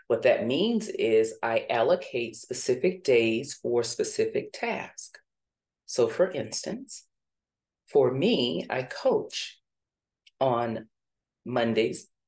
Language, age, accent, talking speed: English, 40-59, American, 100 wpm